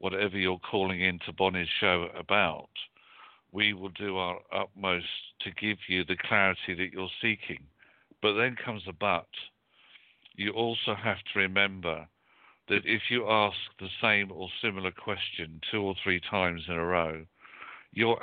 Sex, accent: male, British